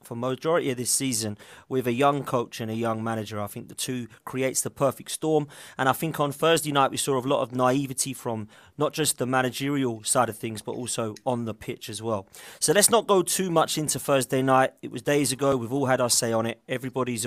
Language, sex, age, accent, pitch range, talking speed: English, male, 30-49, British, 120-145 Hz, 240 wpm